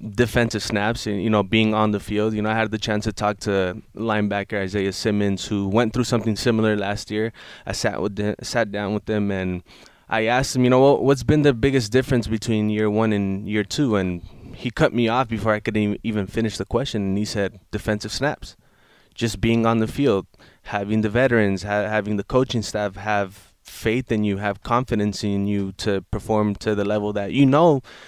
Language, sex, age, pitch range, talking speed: English, male, 20-39, 100-115 Hz, 210 wpm